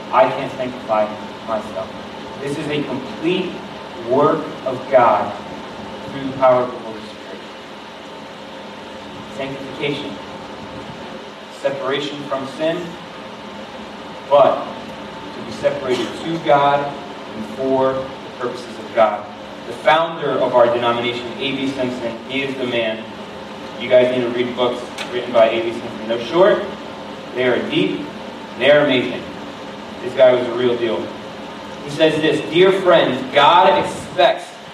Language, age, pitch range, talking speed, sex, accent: English, 30-49, 125-175 Hz, 130 wpm, male, American